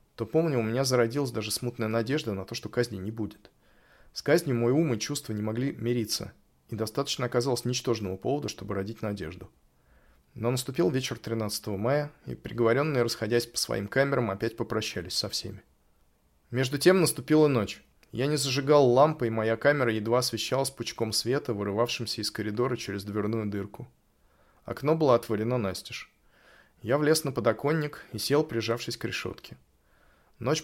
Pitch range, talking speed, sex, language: 105-130 Hz, 155 wpm, male, Russian